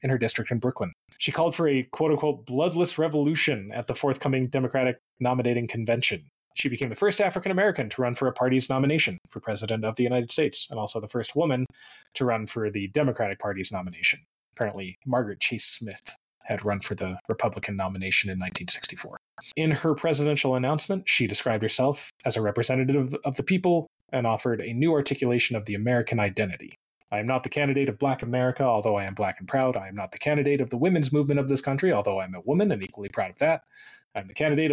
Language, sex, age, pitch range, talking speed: English, male, 20-39, 110-145 Hz, 210 wpm